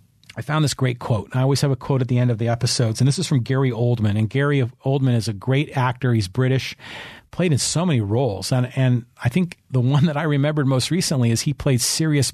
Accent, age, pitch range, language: American, 40-59, 120-145 Hz, English